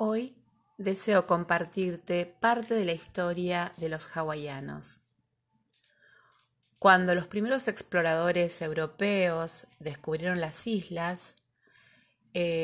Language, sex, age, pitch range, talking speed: Spanish, female, 20-39, 155-205 Hz, 90 wpm